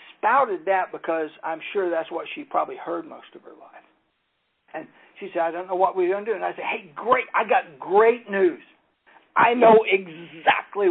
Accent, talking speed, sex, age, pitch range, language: American, 205 wpm, male, 60-79, 175-230 Hz, English